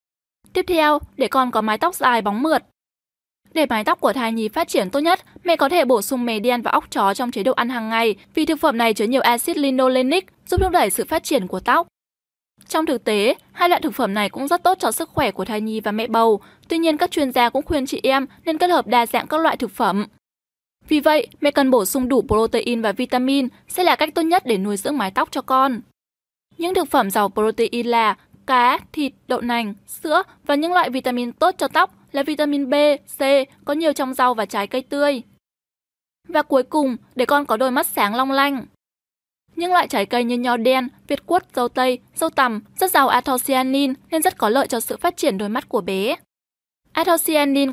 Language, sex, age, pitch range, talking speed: Vietnamese, female, 10-29, 240-315 Hz, 230 wpm